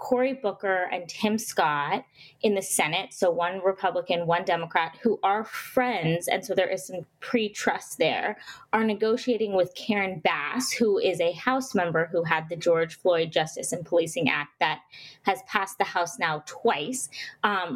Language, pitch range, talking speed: English, 170-225 Hz, 170 wpm